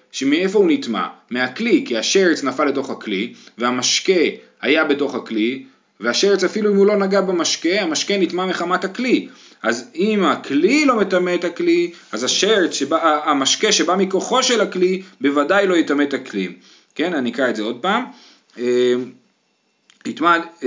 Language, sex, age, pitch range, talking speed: Hebrew, male, 30-49, 130-200 Hz, 150 wpm